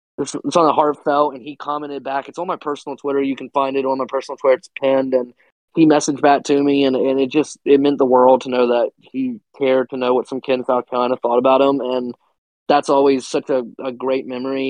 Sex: male